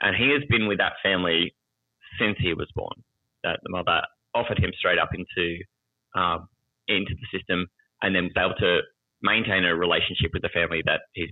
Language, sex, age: English, male, 20-39